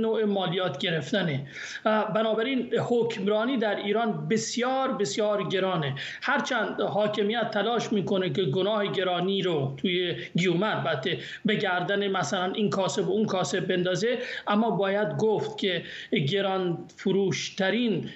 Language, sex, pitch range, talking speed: Persian, male, 180-215 Hz, 115 wpm